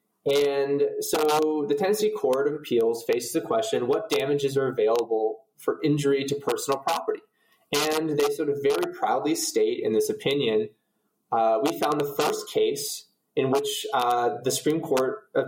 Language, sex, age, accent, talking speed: English, male, 20-39, American, 165 wpm